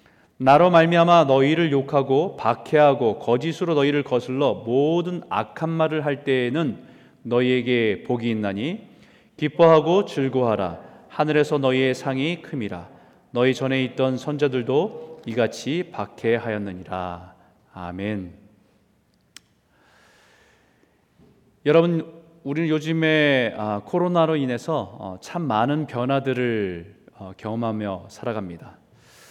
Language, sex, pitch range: Korean, male, 110-150 Hz